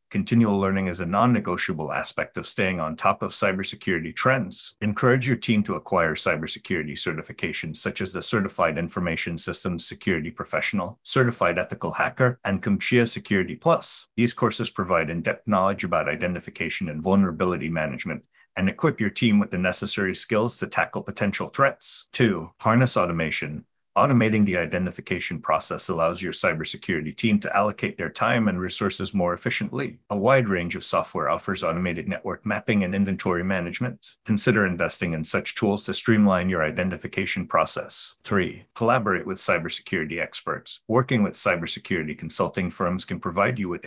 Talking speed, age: 155 wpm, 40-59